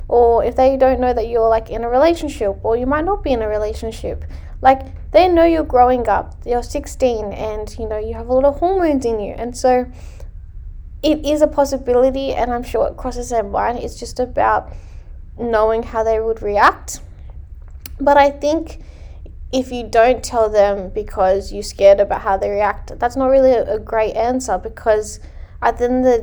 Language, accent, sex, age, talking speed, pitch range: English, Australian, female, 10-29, 195 wpm, 200-255 Hz